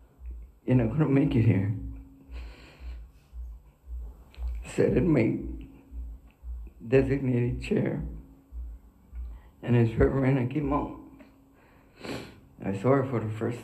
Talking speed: 120 wpm